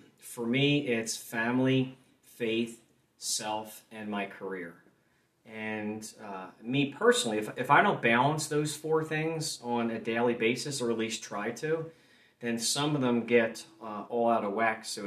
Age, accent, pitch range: 30-49, American, 110-130 Hz